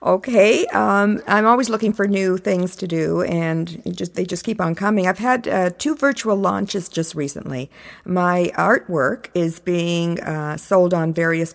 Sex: female